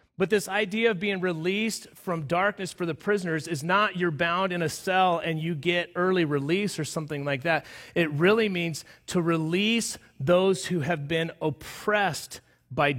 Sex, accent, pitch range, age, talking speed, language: male, American, 150-180 Hz, 30-49, 175 wpm, English